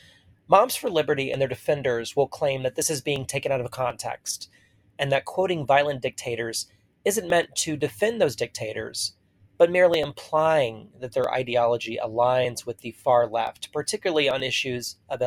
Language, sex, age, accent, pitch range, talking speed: English, male, 30-49, American, 110-140 Hz, 165 wpm